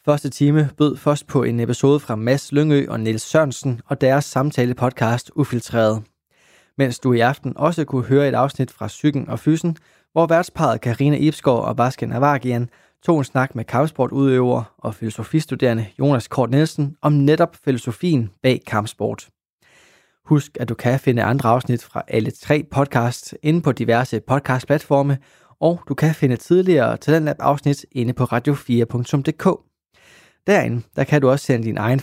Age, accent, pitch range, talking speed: 20-39, native, 120-145 Hz, 155 wpm